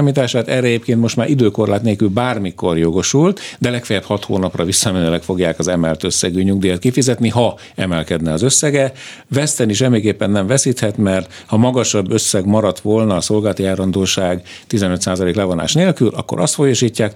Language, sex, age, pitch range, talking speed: Hungarian, male, 50-69, 95-125 Hz, 155 wpm